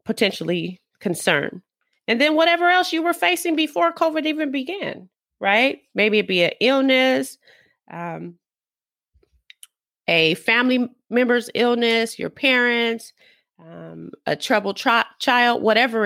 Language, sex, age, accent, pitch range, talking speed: English, female, 30-49, American, 190-245 Hz, 120 wpm